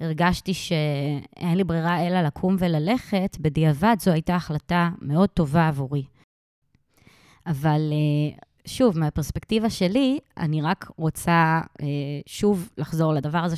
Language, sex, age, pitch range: Hebrew, female, 20-39, 150-190 Hz